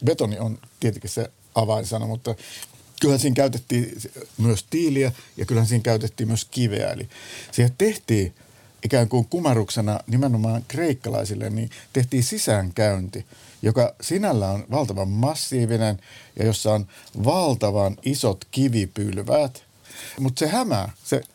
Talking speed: 120 wpm